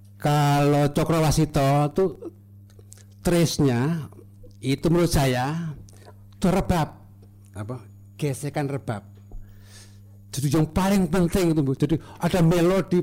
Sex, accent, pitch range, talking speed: male, native, 105-160 Hz, 90 wpm